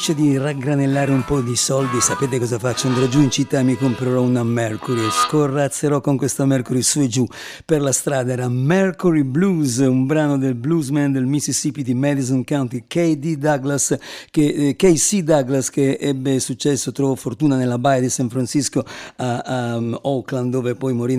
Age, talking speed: 50-69, 180 wpm